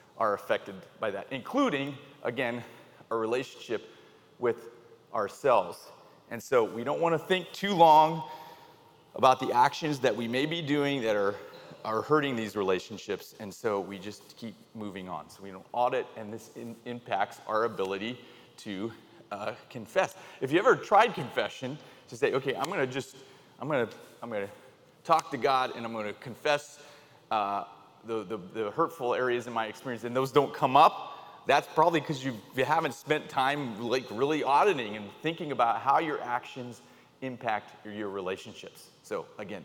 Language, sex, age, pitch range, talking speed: English, male, 30-49, 115-145 Hz, 170 wpm